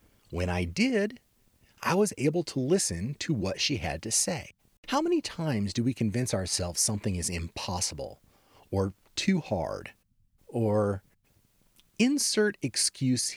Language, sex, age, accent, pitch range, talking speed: English, male, 40-59, American, 100-155 Hz, 135 wpm